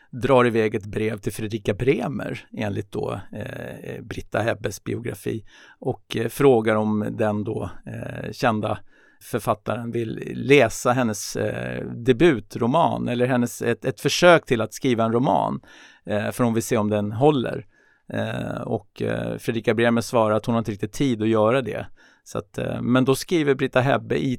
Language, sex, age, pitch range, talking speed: English, male, 50-69, 115-140 Hz, 145 wpm